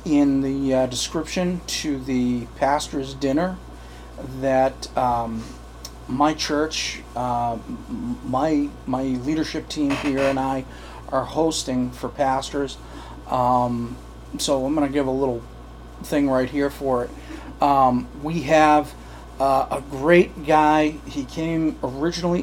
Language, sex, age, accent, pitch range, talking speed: English, male, 40-59, American, 130-155 Hz, 125 wpm